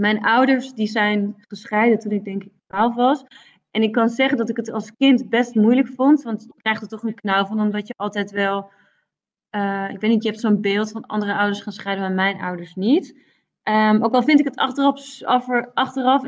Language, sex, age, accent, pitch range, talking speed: Dutch, female, 30-49, Dutch, 200-230 Hz, 220 wpm